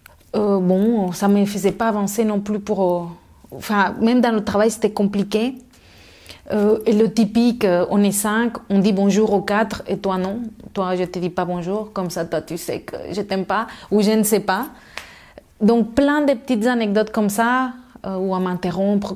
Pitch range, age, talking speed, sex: 200-230 Hz, 30-49, 215 wpm, female